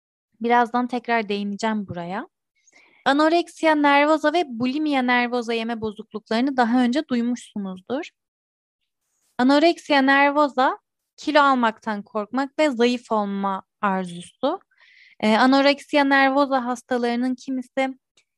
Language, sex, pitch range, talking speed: Turkish, female, 215-270 Hz, 90 wpm